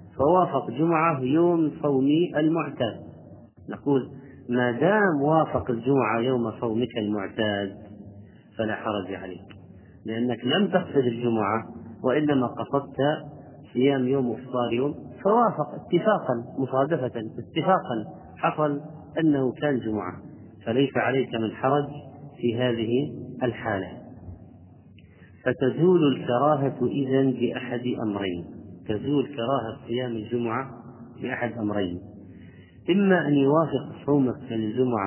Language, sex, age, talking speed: Arabic, male, 40-59, 105 wpm